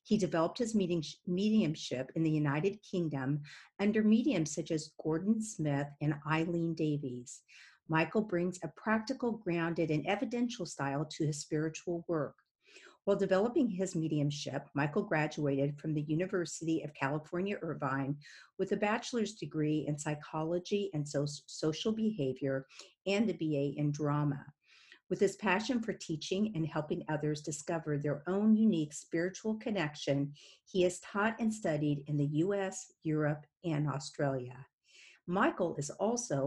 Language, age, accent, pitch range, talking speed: English, 50-69, American, 150-200 Hz, 135 wpm